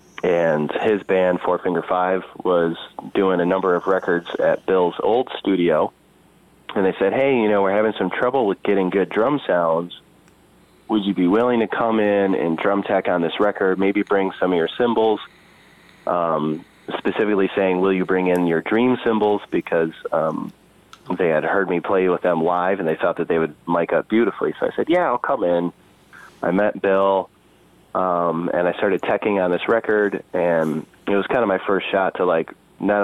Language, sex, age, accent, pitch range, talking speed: English, male, 30-49, American, 90-105 Hz, 195 wpm